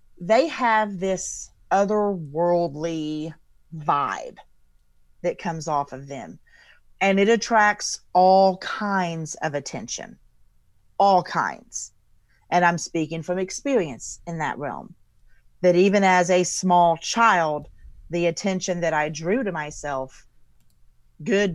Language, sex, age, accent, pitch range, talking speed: English, female, 40-59, American, 145-180 Hz, 115 wpm